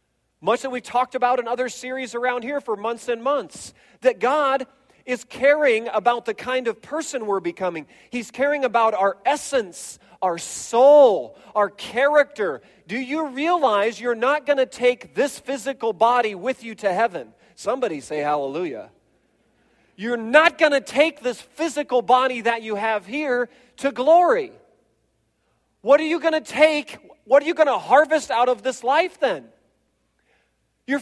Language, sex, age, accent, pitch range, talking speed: English, male, 40-59, American, 225-285 Hz, 165 wpm